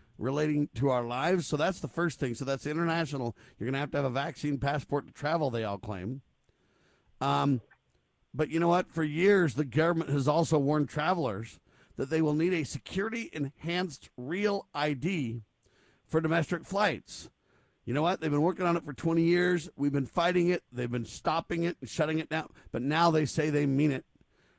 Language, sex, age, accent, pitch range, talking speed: English, male, 50-69, American, 140-170 Hz, 195 wpm